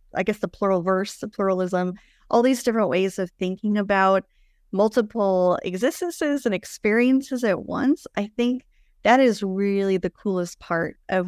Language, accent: English, American